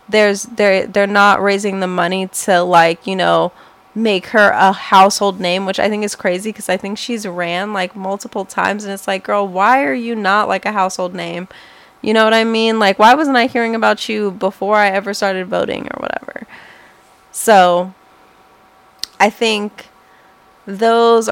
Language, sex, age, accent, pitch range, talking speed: English, female, 20-39, American, 185-210 Hz, 180 wpm